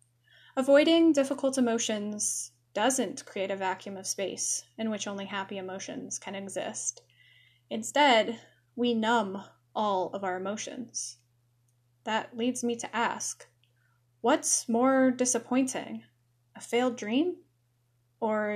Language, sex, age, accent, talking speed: English, female, 10-29, American, 115 wpm